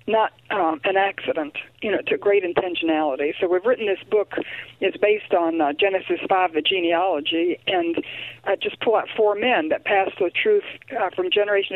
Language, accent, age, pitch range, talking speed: English, American, 60-79, 175-230 Hz, 185 wpm